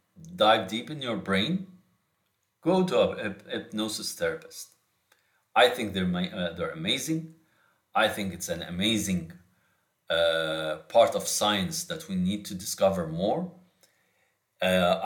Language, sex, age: English, male, 50-69